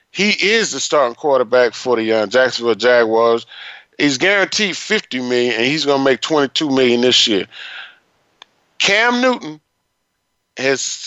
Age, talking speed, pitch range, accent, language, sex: 30-49, 140 wpm, 125-200 Hz, American, English, male